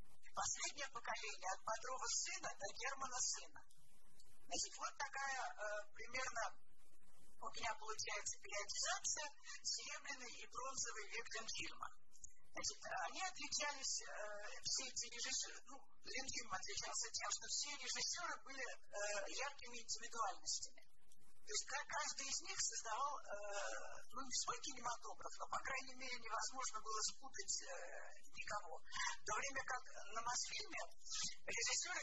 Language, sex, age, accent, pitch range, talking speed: Russian, male, 50-69, native, 220-285 Hz, 120 wpm